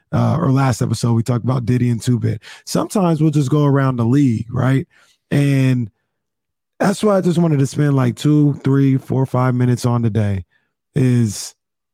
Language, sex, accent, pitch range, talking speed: English, male, American, 125-175 Hz, 175 wpm